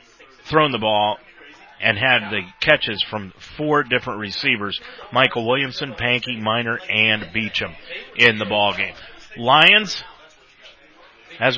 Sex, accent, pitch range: male, American, 110-135 Hz